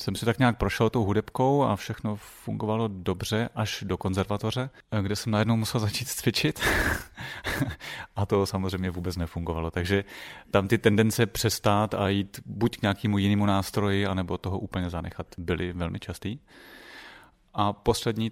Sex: male